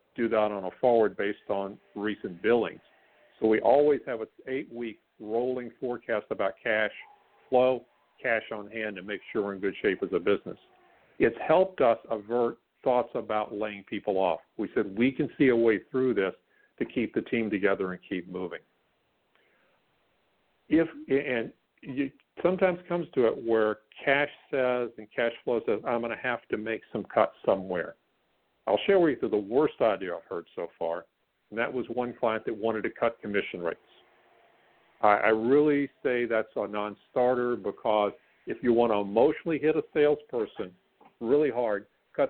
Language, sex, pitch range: English, male, 105-135 Hz